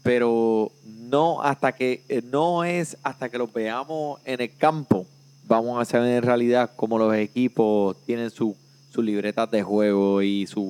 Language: Spanish